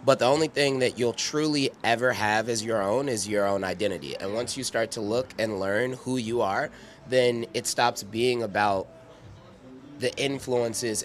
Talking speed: 185 wpm